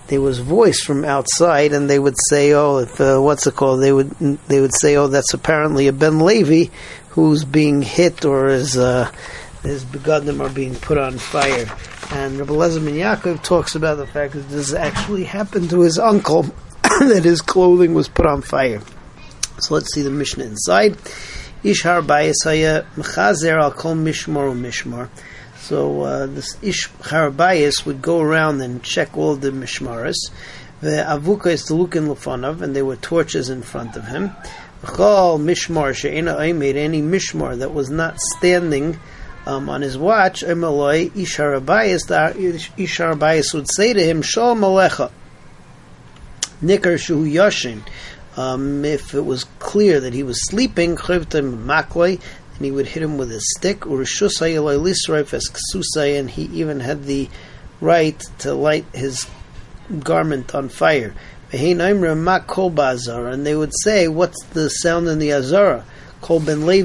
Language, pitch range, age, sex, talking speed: English, 135-170 Hz, 40-59, male, 145 wpm